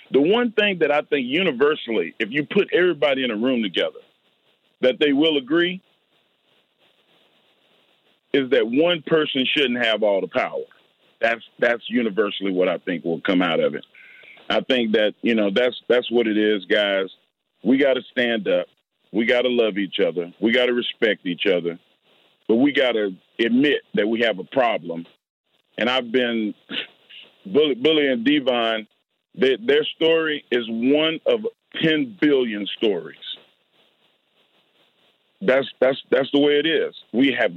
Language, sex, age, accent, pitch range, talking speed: English, male, 40-59, American, 115-160 Hz, 160 wpm